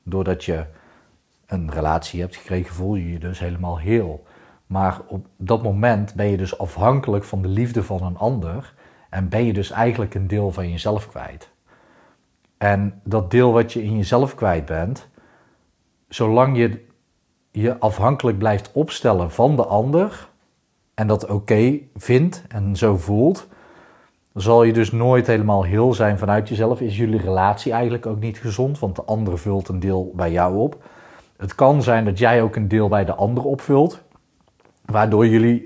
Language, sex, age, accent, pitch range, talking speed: Dutch, male, 40-59, Dutch, 95-115 Hz, 170 wpm